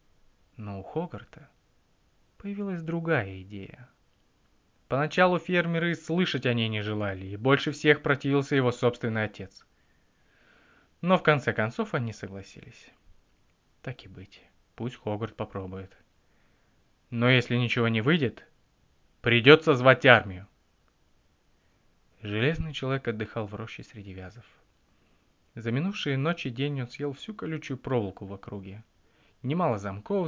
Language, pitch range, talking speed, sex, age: Russian, 105-145 Hz, 120 wpm, male, 20-39